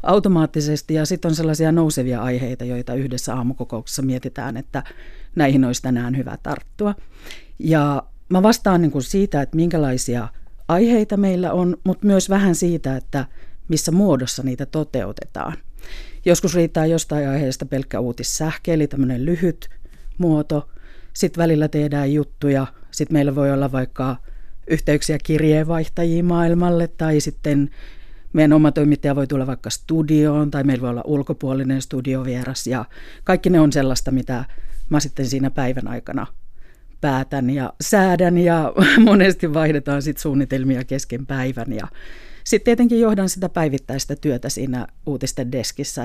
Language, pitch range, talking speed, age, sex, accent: Finnish, 130-160 Hz, 135 wpm, 40-59, female, native